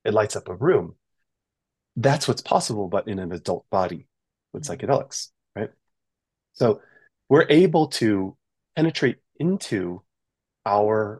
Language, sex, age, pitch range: English, male, 30-49, 95-125 Hz